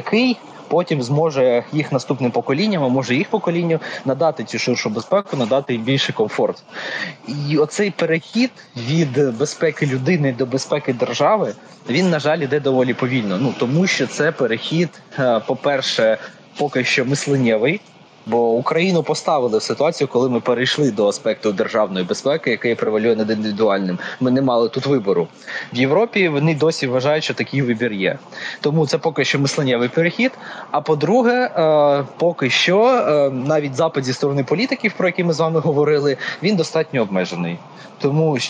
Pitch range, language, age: 125-165 Hz, Ukrainian, 20-39